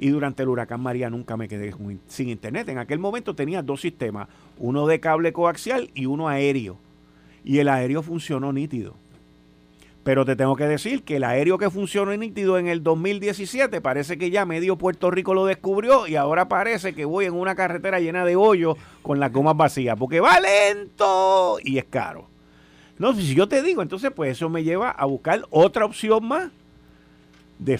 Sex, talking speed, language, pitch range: male, 190 wpm, Spanish, 125-200 Hz